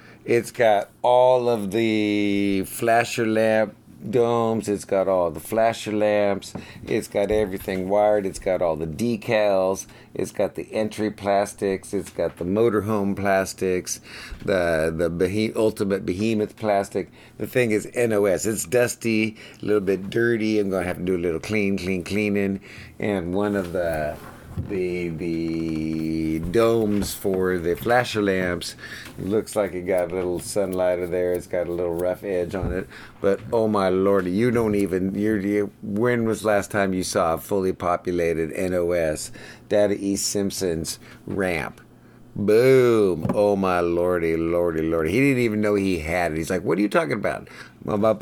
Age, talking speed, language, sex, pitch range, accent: 50-69, 160 wpm, English, male, 90-110 Hz, American